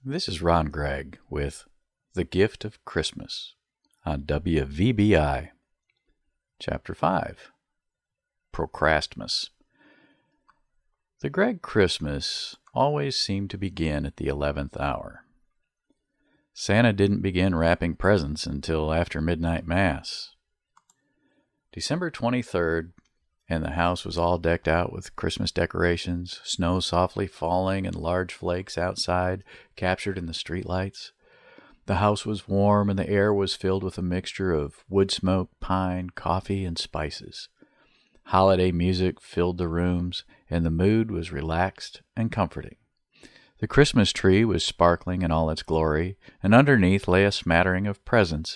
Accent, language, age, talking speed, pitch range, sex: American, English, 50-69, 130 wpm, 85-100 Hz, male